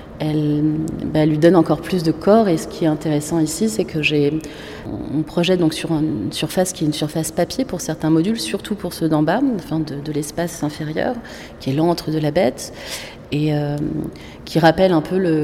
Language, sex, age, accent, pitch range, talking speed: French, female, 30-49, French, 150-170 Hz, 210 wpm